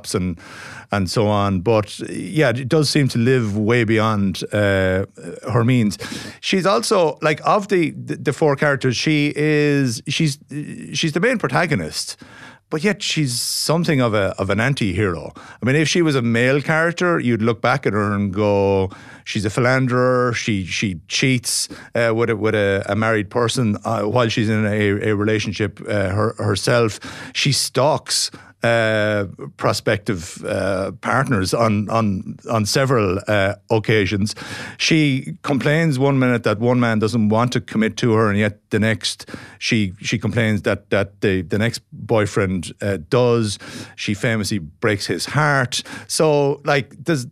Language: English